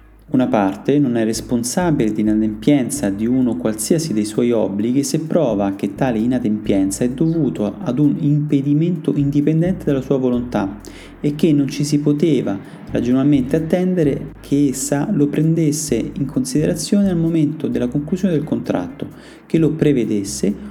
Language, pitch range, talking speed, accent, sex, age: Italian, 120-160 Hz, 145 wpm, native, male, 30-49